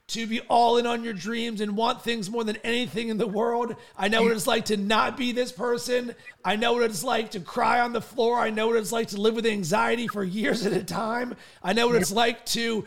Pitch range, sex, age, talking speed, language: 200-235 Hz, male, 30-49, 260 wpm, English